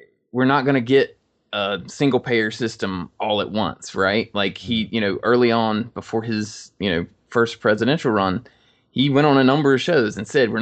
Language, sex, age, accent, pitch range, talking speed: English, male, 20-39, American, 110-135 Hz, 200 wpm